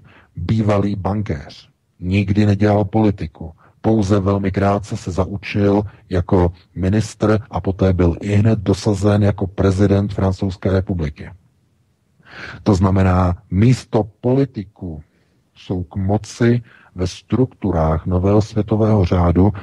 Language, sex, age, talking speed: Czech, male, 40-59, 105 wpm